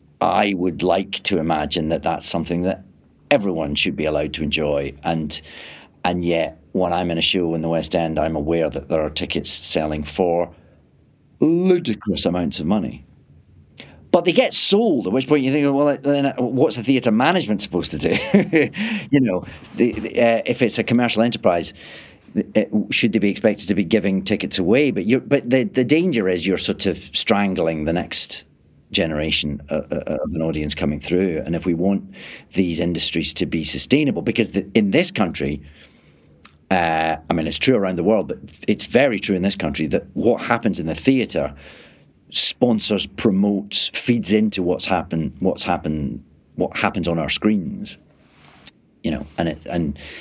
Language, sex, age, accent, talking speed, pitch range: English, male, 40-59, British, 180 wpm, 80-115 Hz